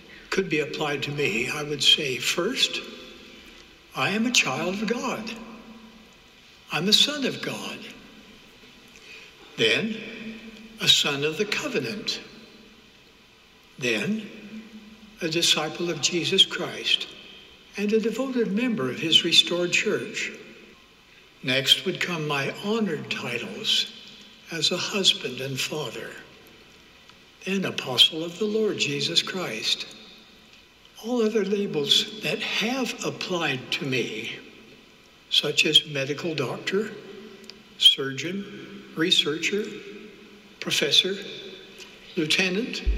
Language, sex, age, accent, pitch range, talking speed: English, male, 60-79, American, 160-220 Hz, 105 wpm